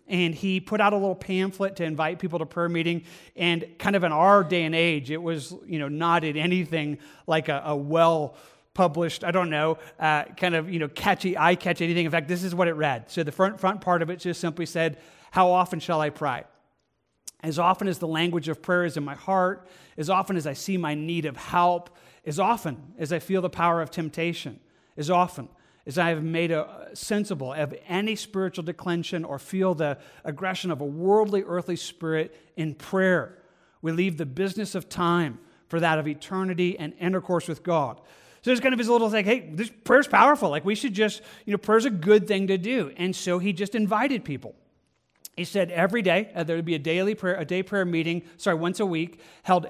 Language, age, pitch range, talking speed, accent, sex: English, 40-59, 160-190 Hz, 215 wpm, American, male